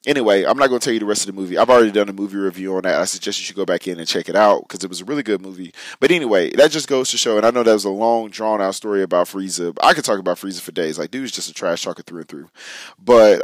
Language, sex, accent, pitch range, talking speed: English, male, American, 95-125 Hz, 320 wpm